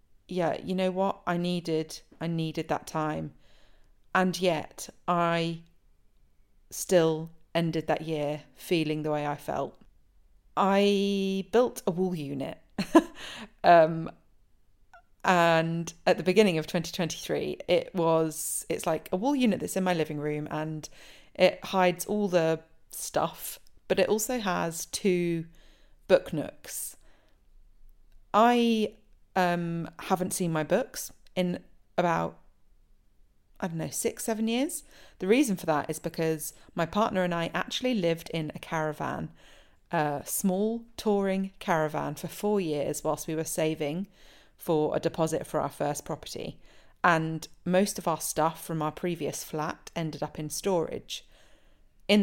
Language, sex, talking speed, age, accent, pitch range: English, female, 140 wpm, 30-49, British, 155-185 Hz